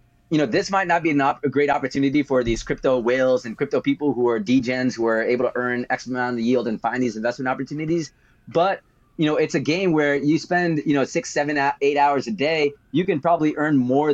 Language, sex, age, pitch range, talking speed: English, male, 30-49, 120-145 Hz, 245 wpm